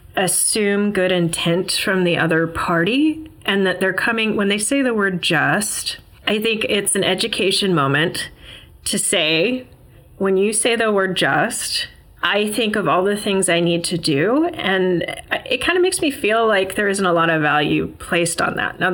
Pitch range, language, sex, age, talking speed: 175-225 Hz, English, female, 30-49, 185 wpm